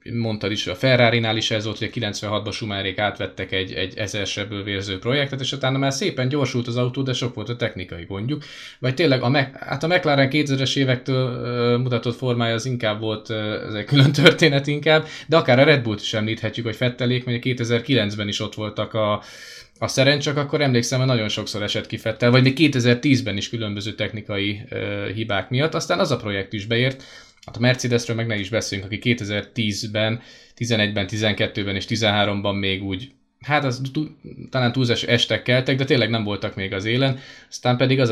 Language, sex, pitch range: Hungarian, male, 105-130 Hz